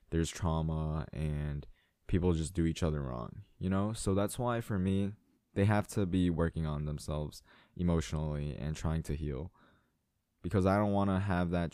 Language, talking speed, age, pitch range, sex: English, 180 wpm, 20-39, 80-95 Hz, male